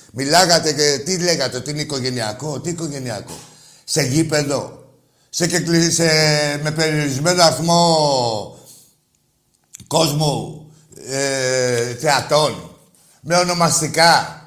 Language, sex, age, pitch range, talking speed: Greek, male, 60-79, 135-200 Hz, 75 wpm